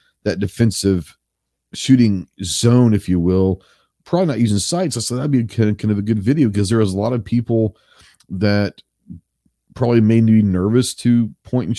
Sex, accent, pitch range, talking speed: male, American, 95-120 Hz, 195 wpm